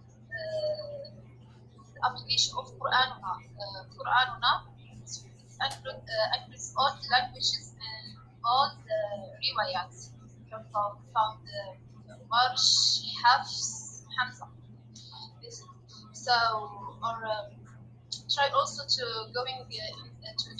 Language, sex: English, female